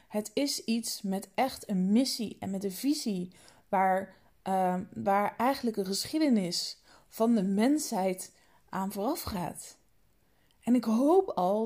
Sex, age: female, 20-39